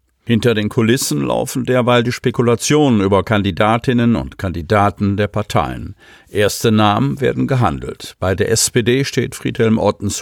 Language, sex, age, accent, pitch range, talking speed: German, male, 50-69, German, 95-125 Hz, 135 wpm